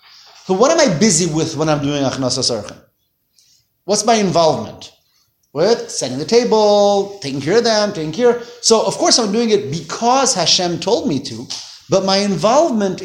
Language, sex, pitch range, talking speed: English, male, 155-205 Hz, 165 wpm